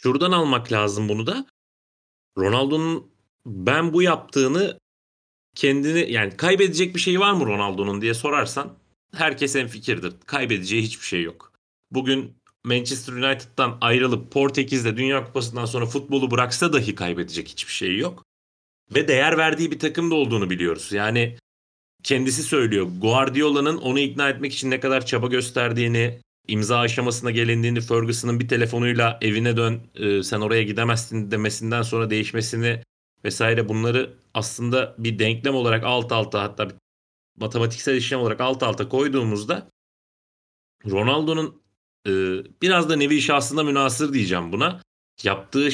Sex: male